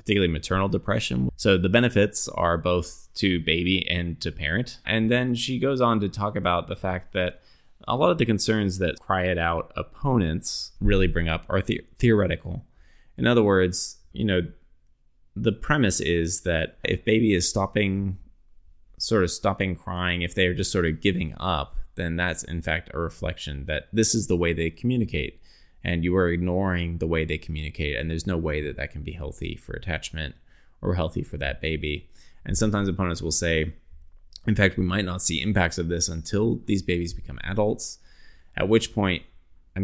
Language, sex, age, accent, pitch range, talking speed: English, male, 20-39, American, 80-100 Hz, 185 wpm